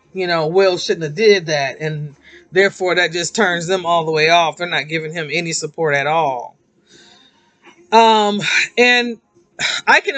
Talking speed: 170 wpm